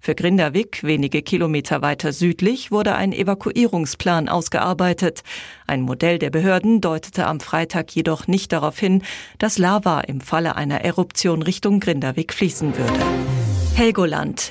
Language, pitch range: German, 160-205 Hz